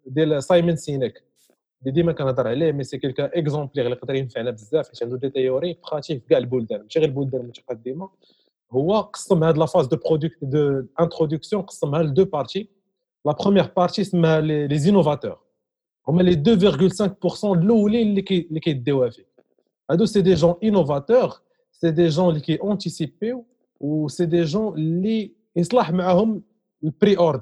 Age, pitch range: 40-59, 150-195 Hz